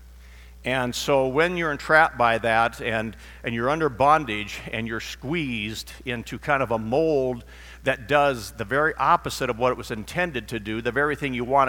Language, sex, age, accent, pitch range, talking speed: English, male, 50-69, American, 115-165 Hz, 190 wpm